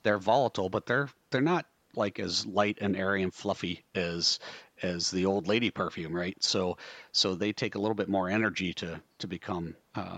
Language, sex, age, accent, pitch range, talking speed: English, male, 40-59, American, 90-105 Hz, 195 wpm